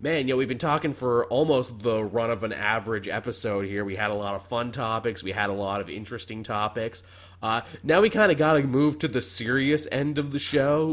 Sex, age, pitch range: male, 20-39, 105-130 Hz